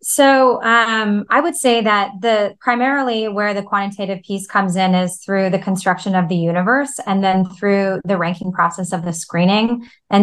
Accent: American